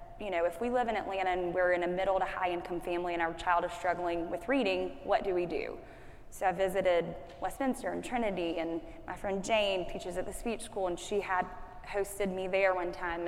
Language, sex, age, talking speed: English, female, 10-29, 215 wpm